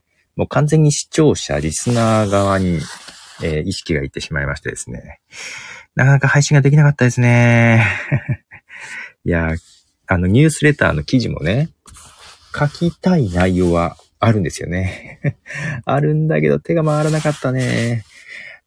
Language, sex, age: Japanese, male, 40-59